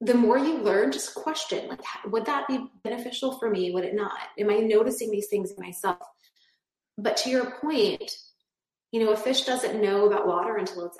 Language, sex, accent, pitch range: English, female, American, 190-260 Hz